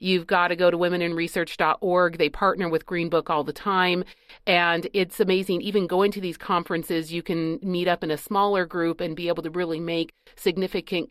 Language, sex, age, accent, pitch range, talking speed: English, female, 40-59, American, 160-190 Hz, 195 wpm